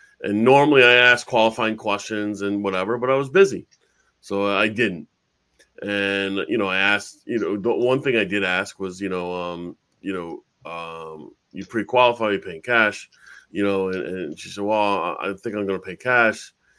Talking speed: 195 wpm